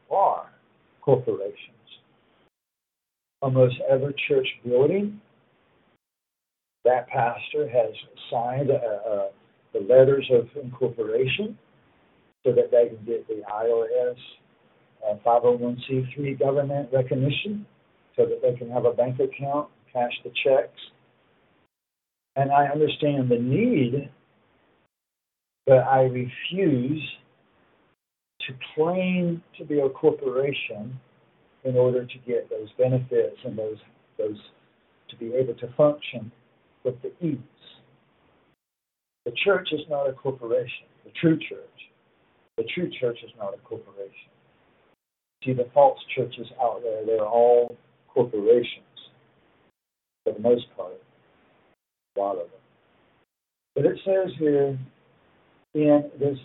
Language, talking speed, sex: English, 115 wpm, male